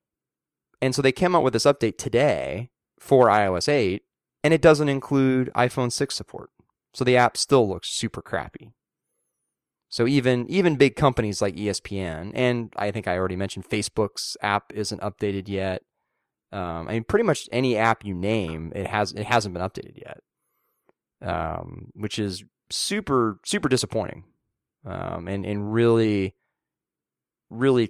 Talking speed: 155 wpm